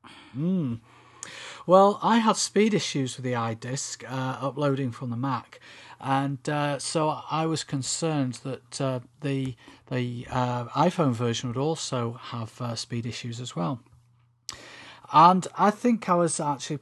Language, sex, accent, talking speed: English, male, British, 145 wpm